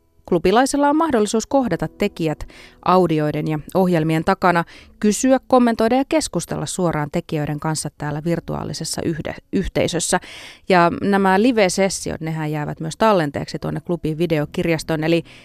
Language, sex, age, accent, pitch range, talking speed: Finnish, female, 30-49, native, 150-205 Hz, 115 wpm